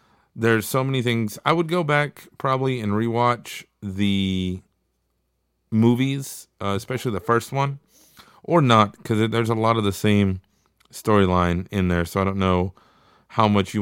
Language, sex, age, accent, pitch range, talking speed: English, male, 30-49, American, 95-115 Hz, 160 wpm